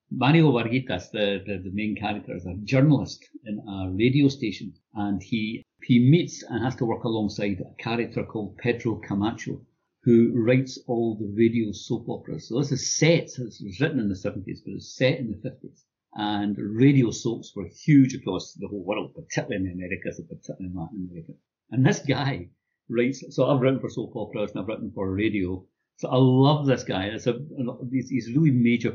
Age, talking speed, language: 60-79, 200 wpm, English